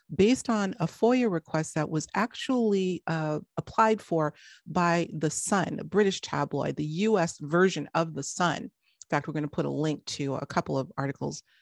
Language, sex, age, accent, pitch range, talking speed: English, female, 40-59, American, 145-180 Hz, 185 wpm